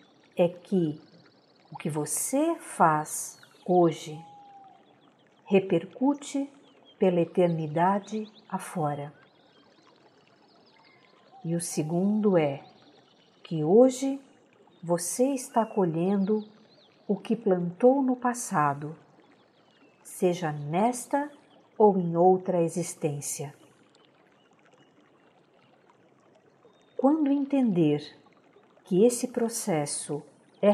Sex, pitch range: female, 160-230 Hz